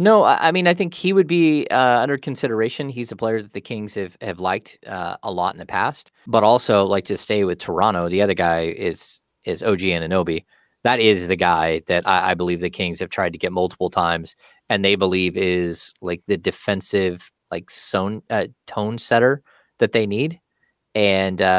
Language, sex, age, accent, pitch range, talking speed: English, male, 30-49, American, 90-110 Hz, 200 wpm